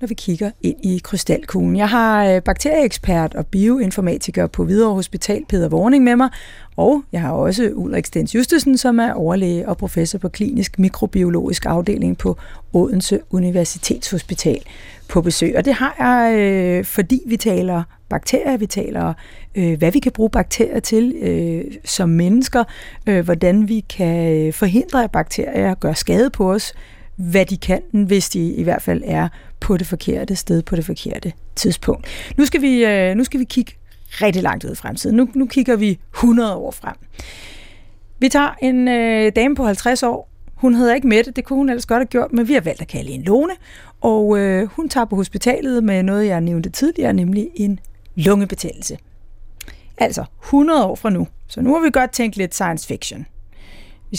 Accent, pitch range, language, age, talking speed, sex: native, 175-245 Hz, Danish, 30-49, 180 wpm, female